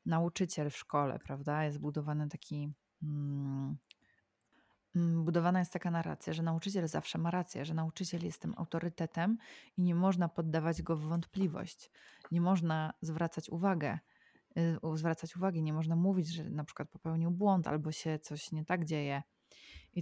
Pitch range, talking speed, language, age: 155-175 Hz, 150 wpm, Polish, 20-39